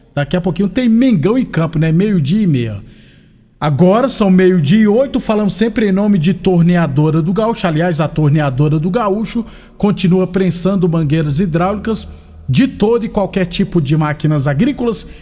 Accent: Brazilian